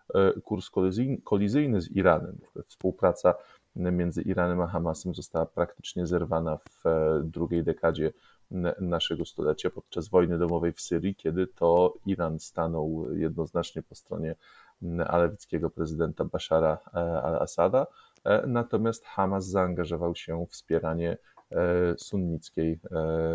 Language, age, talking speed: Polish, 30-49, 105 wpm